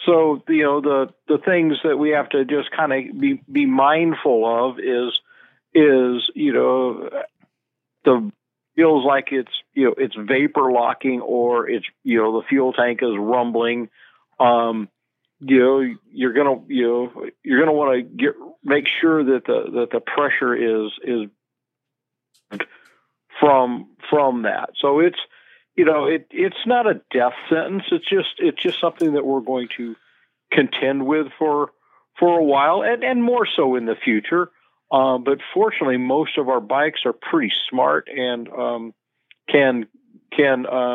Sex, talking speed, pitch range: male, 165 wpm, 125-165 Hz